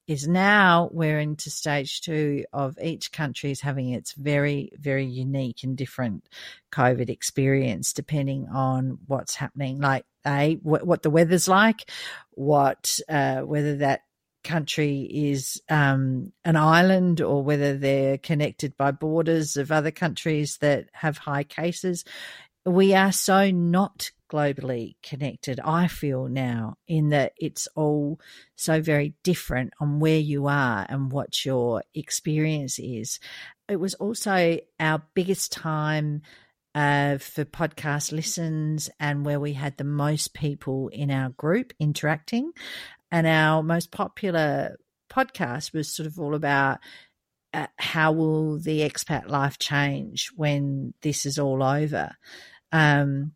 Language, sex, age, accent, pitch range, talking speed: English, female, 50-69, Australian, 140-160 Hz, 135 wpm